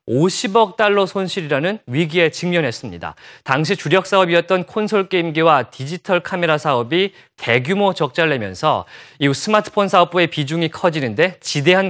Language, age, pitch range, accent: Korean, 30-49, 150-200 Hz, native